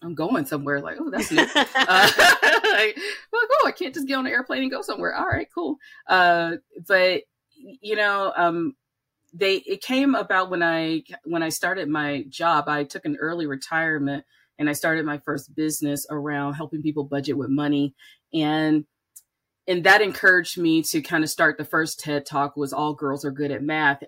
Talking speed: 190 wpm